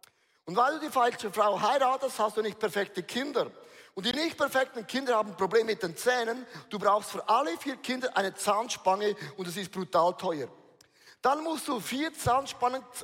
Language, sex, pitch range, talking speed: German, male, 200-255 Hz, 190 wpm